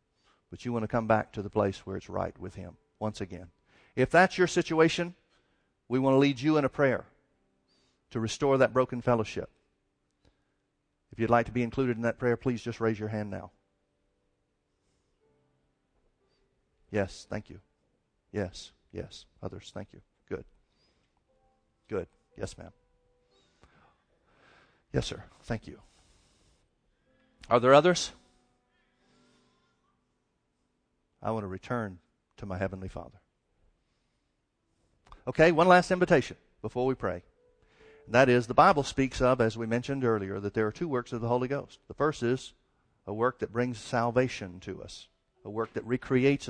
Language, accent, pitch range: English, American, 100-135 Hz